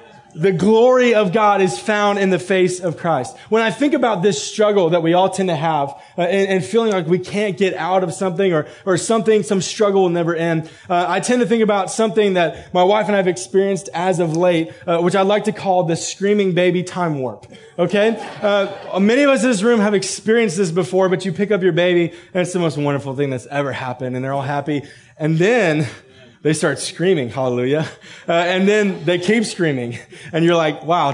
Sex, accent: male, American